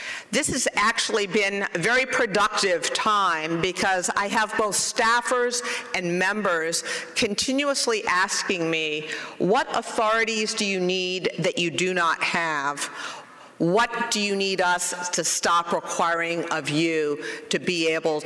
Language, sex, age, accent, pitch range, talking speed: English, female, 50-69, American, 170-230 Hz, 135 wpm